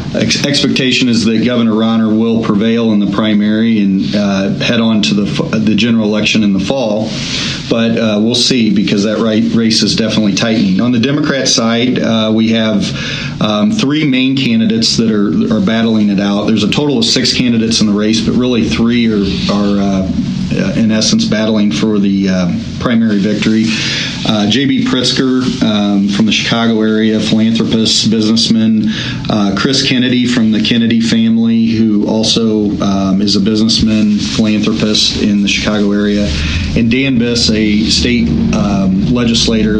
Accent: American